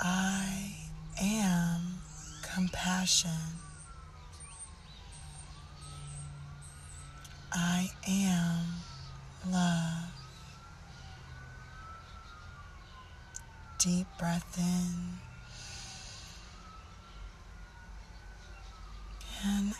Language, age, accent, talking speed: English, 20-39, American, 30 wpm